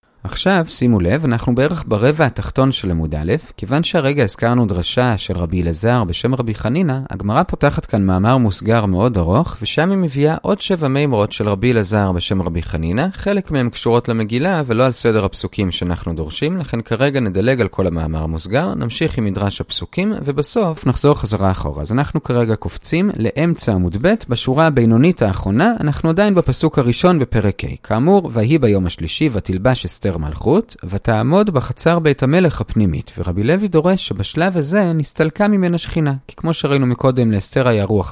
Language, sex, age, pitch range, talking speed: Hebrew, male, 30-49, 105-160 Hz, 155 wpm